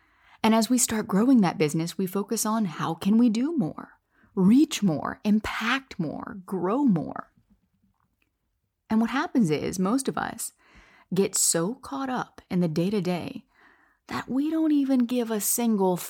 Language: English